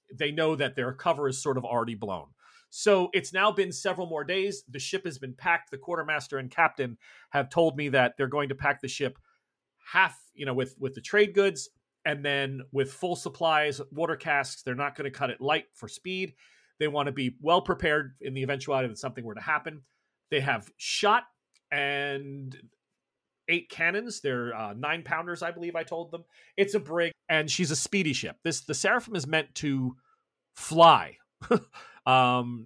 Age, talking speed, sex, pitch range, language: 30-49, 195 wpm, male, 135-170 Hz, English